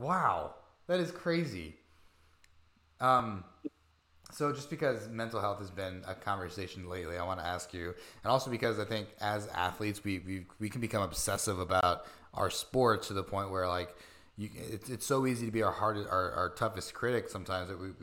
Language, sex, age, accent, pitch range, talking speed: English, male, 20-39, American, 90-110 Hz, 190 wpm